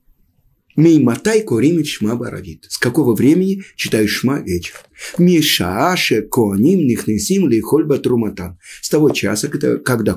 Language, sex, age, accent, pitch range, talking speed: Russian, male, 50-69, native, 105-170 Hz, 120 wpm